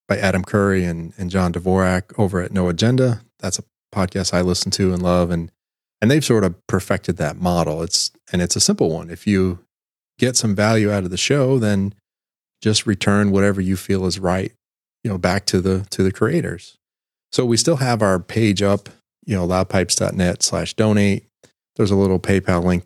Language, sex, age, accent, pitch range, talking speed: English, male, 30-49, American, 90-105 Hz, 195 wpm